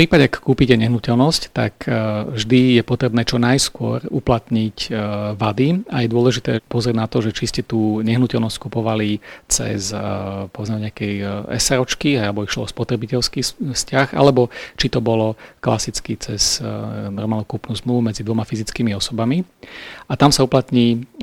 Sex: male